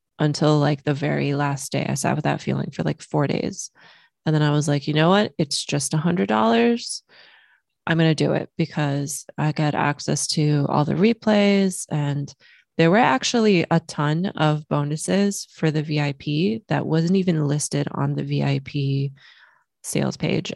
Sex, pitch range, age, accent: female, 145-175 Hz, 20-39, American